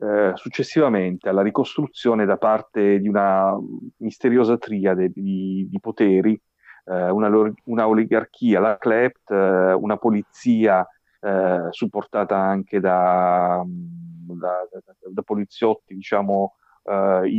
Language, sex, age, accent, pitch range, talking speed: Italian, male, 40-59, native, 95-110 Hz, 105 wpm